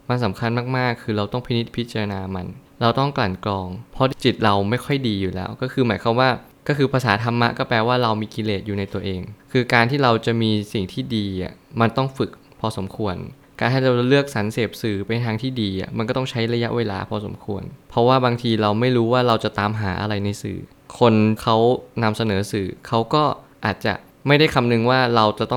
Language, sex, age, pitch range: Thai, male, 20-39, 105-125 Hz